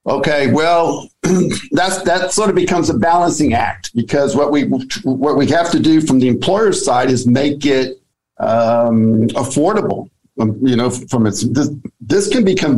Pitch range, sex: 120-145 Hz, male